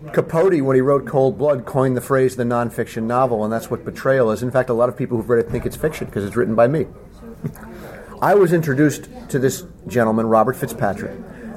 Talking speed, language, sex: 220 wpm, English, male